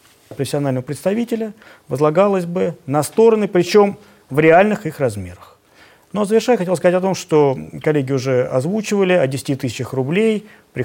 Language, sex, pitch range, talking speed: Russian, male, 135-185 Hz, 155 wpm